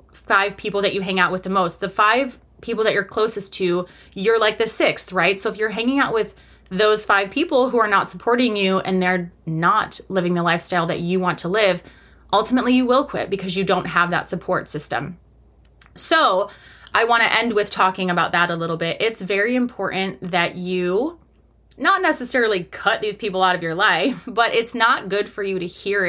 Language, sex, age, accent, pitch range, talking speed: English, female, 20-39, American, 175-230 Hz, 210 wpm